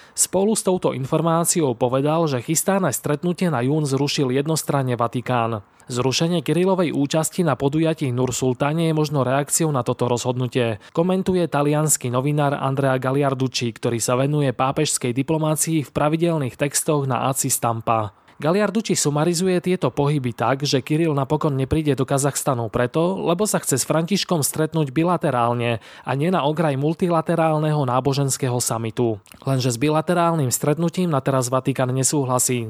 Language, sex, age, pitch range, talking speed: Slovak, male, 20-39, 130-160 Hz, 140 wpm